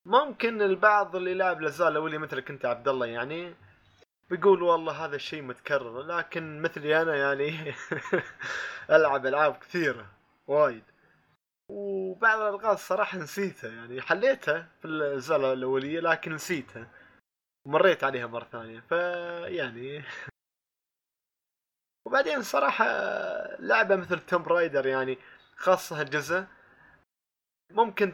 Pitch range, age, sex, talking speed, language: 125-175 Hz, 20-39, male, 105 wpm, Arabic